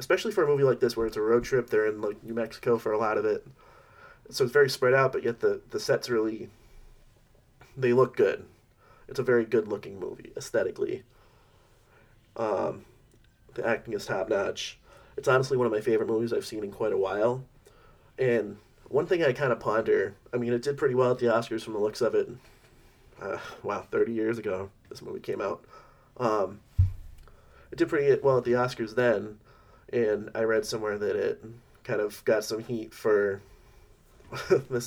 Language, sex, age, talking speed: English, male, 30-49, 190 wpm